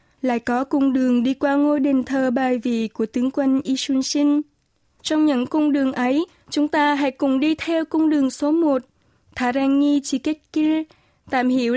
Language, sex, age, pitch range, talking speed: Vietnamese, female, 20-39, 255-295 Hz, 175 wpm